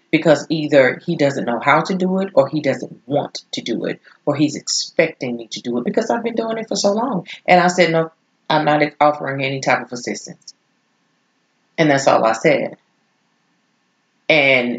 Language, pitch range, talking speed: English, 125-160 Hz, 195 wpm